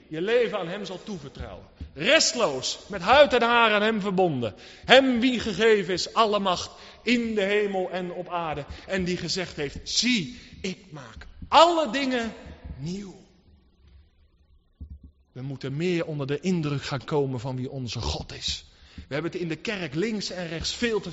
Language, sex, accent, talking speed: Dutch, male, Dutch, 170 wpm